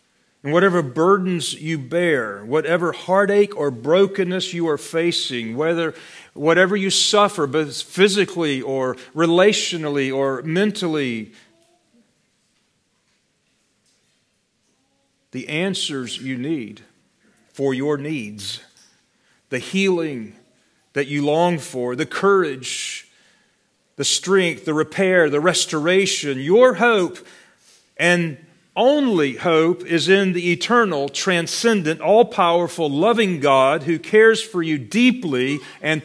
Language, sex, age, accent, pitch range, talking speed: English, male, 40-59, American, 155-205 Hz, 105 wpm